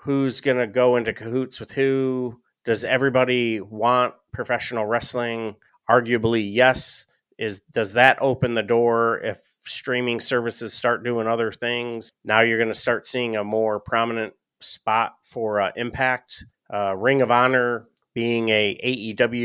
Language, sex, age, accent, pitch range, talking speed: English, male, 30-49, American, 110-125 Hz, 140 wpm